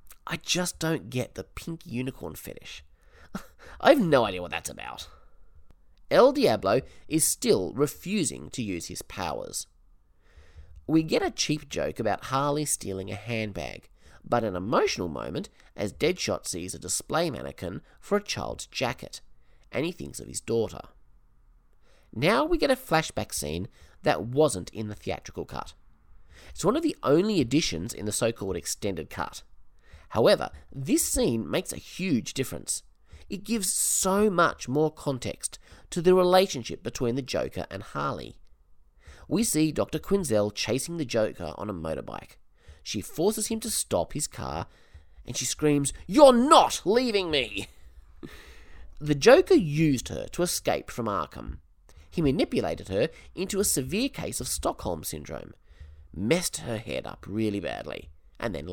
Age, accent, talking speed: 30-49, Australian, 150 wpm